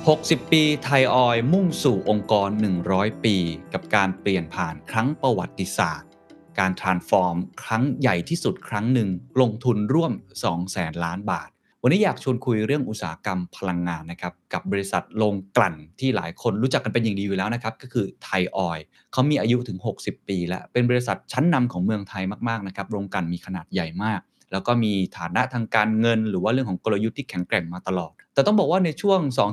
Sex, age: male, 20-39